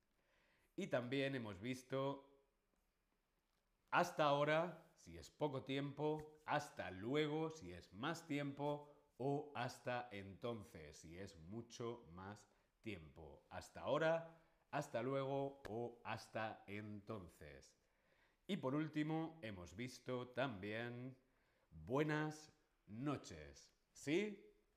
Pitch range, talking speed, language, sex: 105-145 Hz, 95 wpm, Spanish, male